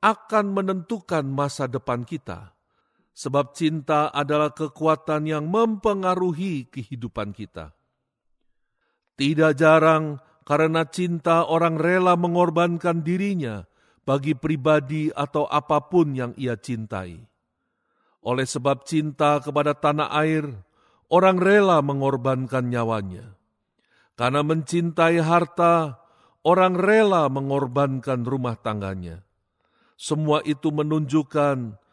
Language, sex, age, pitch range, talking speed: Indonesian, male, 50-69, 130-170 Hz, 90 wpm